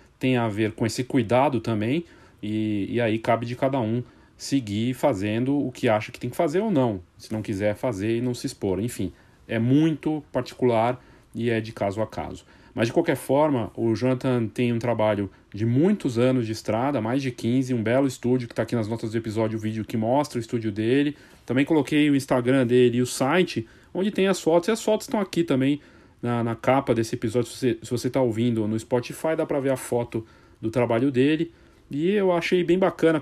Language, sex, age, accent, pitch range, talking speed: Portuguese, male, 40-59, Brazilian, 115-140 Hz, 215 wpm